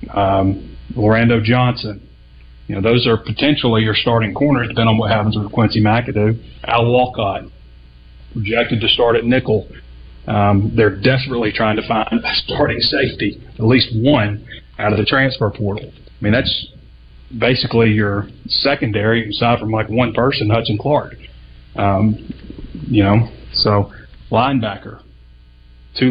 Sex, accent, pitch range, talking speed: male, American, 100-120 Hz, 140 wpm